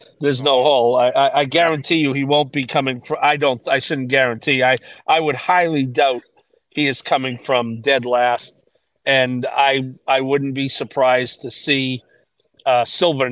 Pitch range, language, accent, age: 125-150 Hz, English, American, 50-69